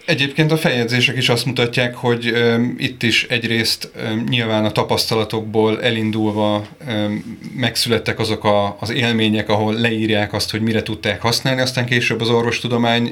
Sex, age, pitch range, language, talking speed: male, 30-49, 110-125 Hz, Hungarian, 150 wpm